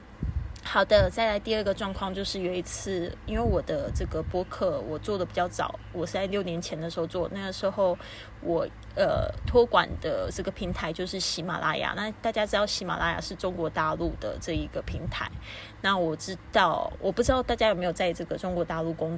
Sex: female